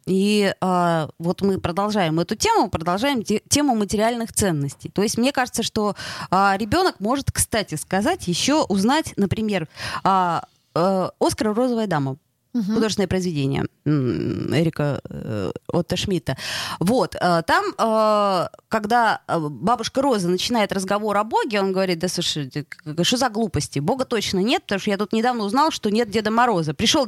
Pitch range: 180-255 Hz